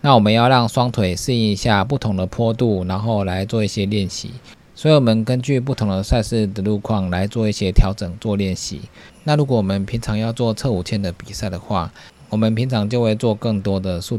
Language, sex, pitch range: Chinese, male, 95-115 Hz